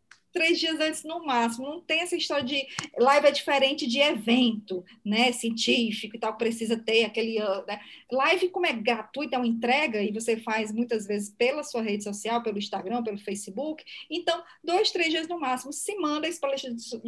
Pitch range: 240-310 Hz